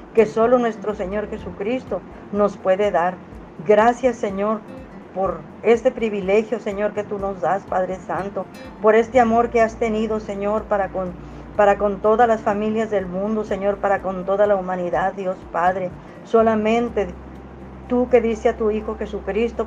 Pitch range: 180-215 Hz